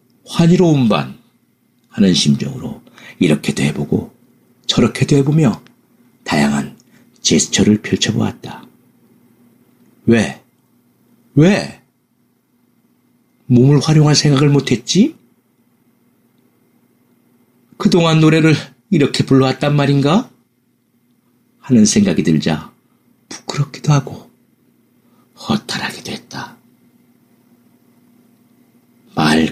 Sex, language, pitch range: male, Korean, 105-160 Hz